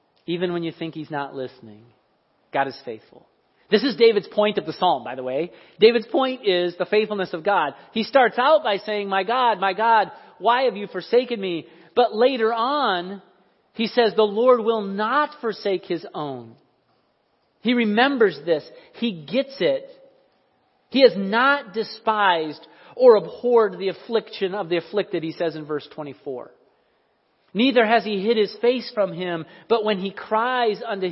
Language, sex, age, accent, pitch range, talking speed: English, male, 40-59, American, 175-225 Hz, 170 wpm